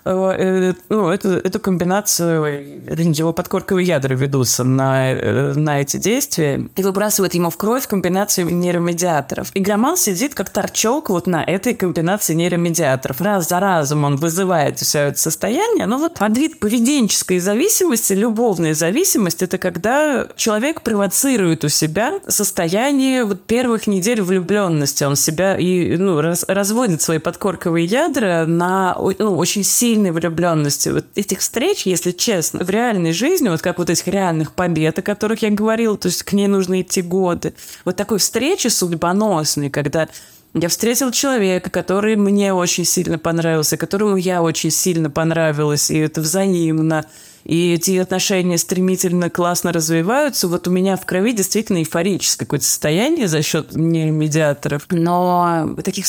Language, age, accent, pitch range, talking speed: Russian, 20-39, native, 165-205 Hz, 145 wpm